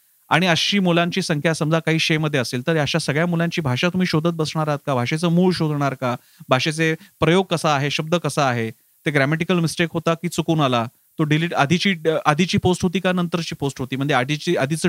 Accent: native